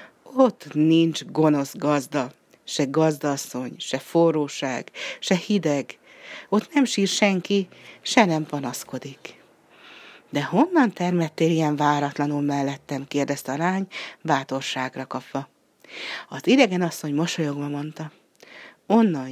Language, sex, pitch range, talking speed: Hungarian, female, 145-190 Hz, 105 wpm